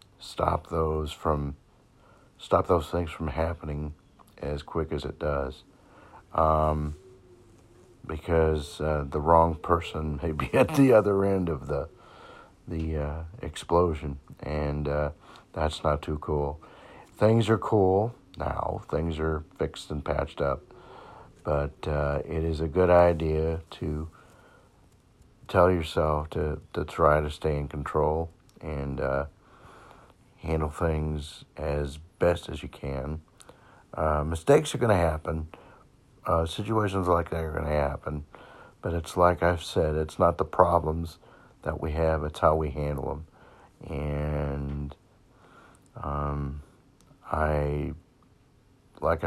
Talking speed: 130 wpm